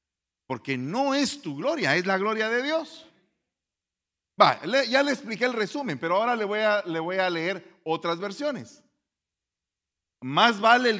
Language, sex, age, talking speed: Spanish, male, 50-69, 165 wpm